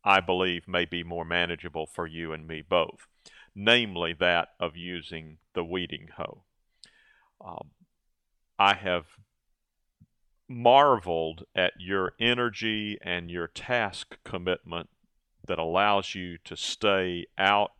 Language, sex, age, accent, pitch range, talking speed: English, male, 40-59, American, 85-105 Hz, 120 wpm